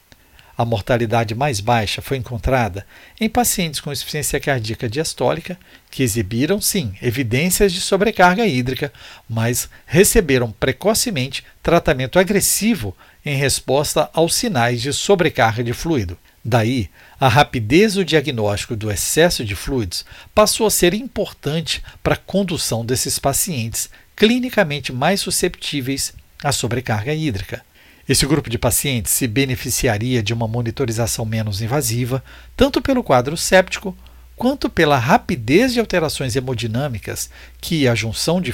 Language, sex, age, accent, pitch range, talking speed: Portuguese, male, 60-79, Brazilian, 115-165 Hz, 125 wpm